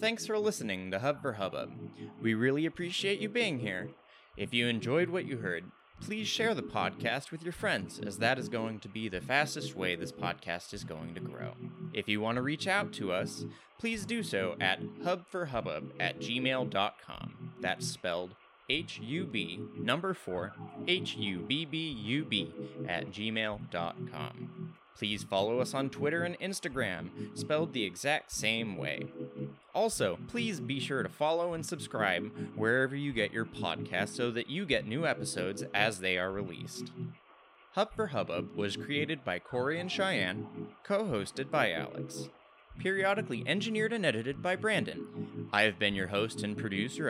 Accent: American